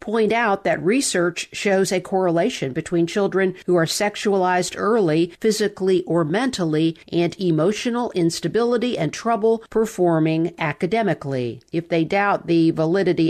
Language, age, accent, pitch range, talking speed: English, 50-69, American, 160-195 Hz, 125 wpm